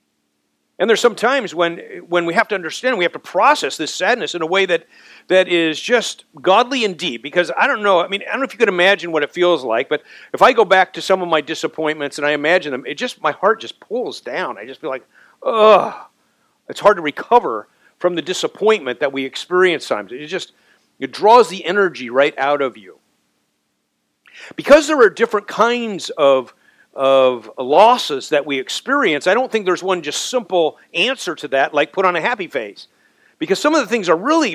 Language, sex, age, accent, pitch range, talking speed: English, male, 50-69, American, 155-240 Hz, 215 wpm